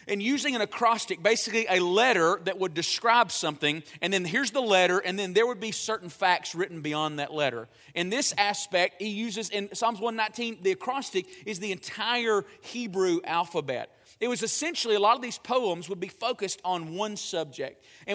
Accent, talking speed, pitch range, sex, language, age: American, 190 wpm, 170-230 Hz, male, English, 40-59